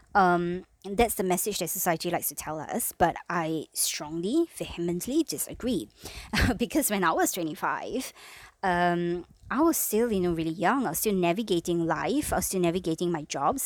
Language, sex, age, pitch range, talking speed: English, male, 20-39, 165-205 Hz, 175 wpm